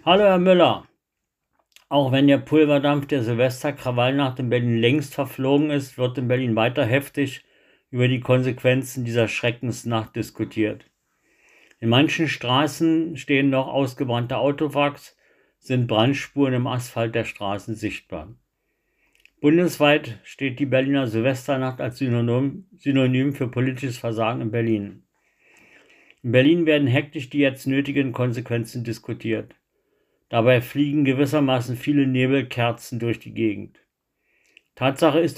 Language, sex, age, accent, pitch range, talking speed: German, male, 60-79, German, 120-140 Hz, 120 wpm